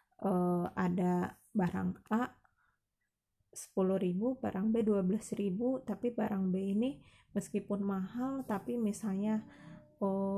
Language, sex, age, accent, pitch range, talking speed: Indonesian, female, 20-39, native, 185-215 Hz, 100 wpm